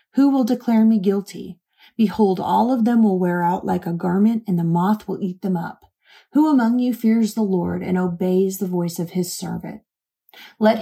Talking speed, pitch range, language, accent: 200 wpm, 185-230 Hz, English, American